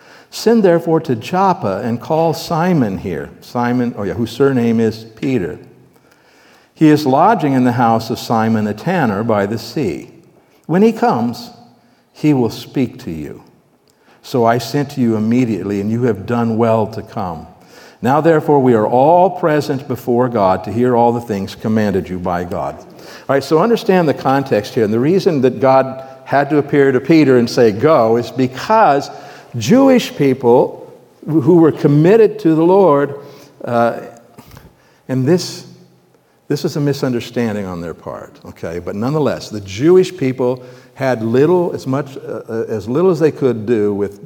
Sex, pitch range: male, 115-150 Hz